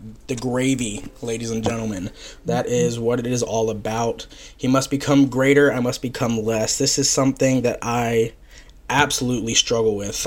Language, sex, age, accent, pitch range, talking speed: English, male, 20-39, American, 115-140 Hz, 165 wpm